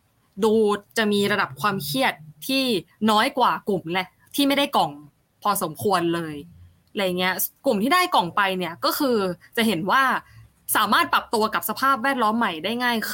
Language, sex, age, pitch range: Thai, female, 20-39, 180-230 Hz